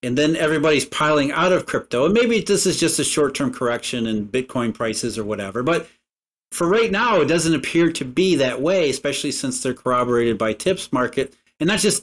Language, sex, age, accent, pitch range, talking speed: English, male, 50-69, American, 125-175 Hz, 205 wpm